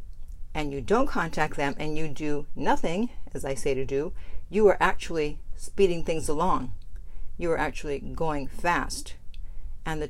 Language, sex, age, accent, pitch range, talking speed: English, female, 50-69, American, 115-180 Hz, 160 wpm